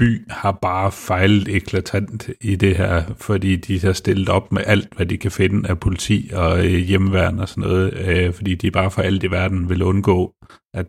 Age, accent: 40-59, native